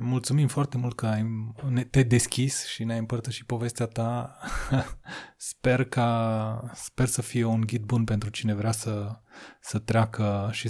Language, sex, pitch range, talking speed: Romanian, male, 110-125 Hz, 145 wpm